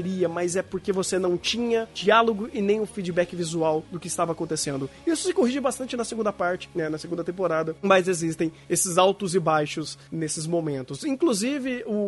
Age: 20-39